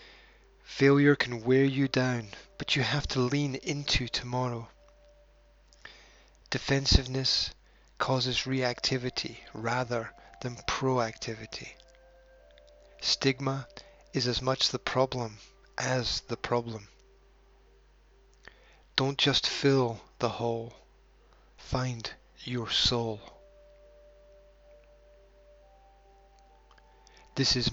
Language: English